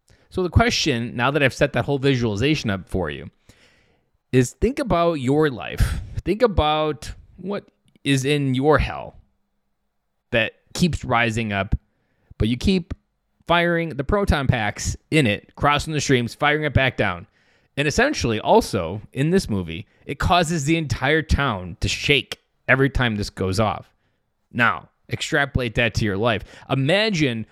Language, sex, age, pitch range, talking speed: English, male, 20-39, 105-150 Hz, 155 wpm